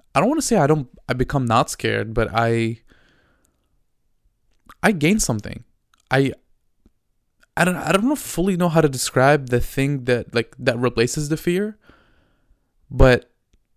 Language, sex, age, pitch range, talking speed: English, male, 20-39, 115-145 Hz, 155 wpm